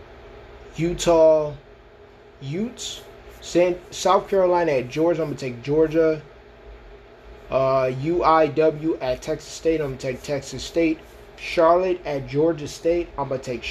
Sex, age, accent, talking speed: male, 20-39, American, 130 wpm